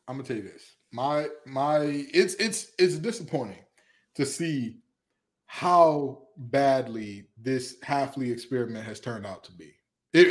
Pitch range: 125-155 Hz